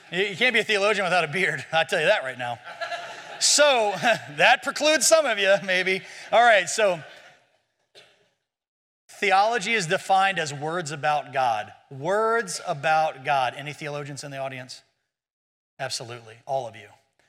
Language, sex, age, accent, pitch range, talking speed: English, male, 30-49, American, 170-275 Hz, 150 wpm